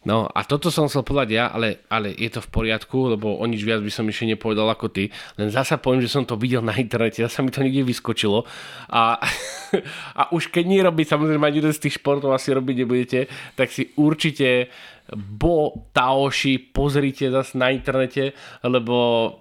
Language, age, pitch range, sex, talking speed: Slovak, 20-39, 125-150 Hz, male, 190 wpm